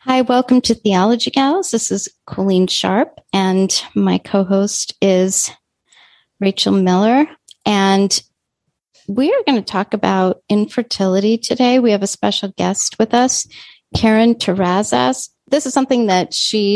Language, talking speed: English, 135 wpm